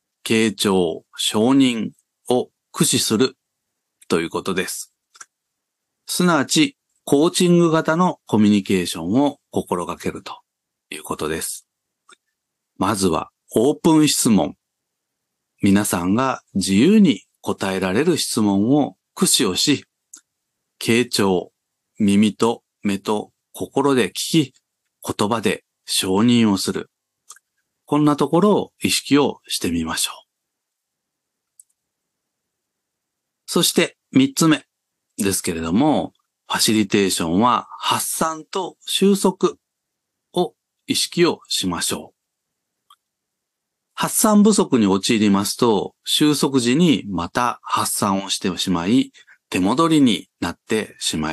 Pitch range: 95-160 Hz